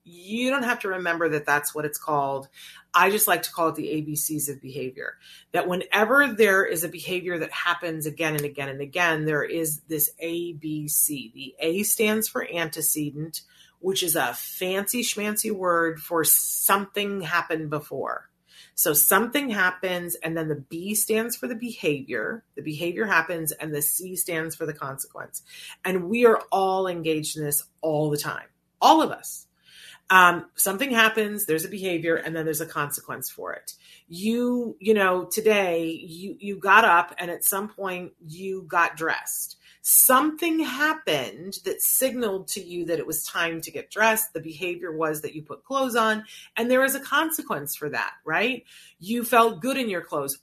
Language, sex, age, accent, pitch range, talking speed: English, female, 30-49, American, 160-220 Hz, 175 wpm